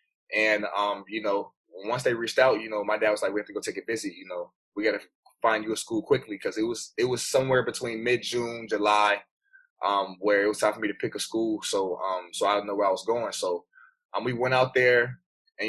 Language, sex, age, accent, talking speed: English, male, 20-39, American, 260 wpm